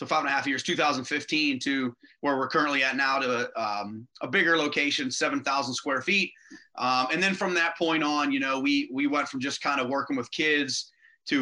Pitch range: 135-165 Hz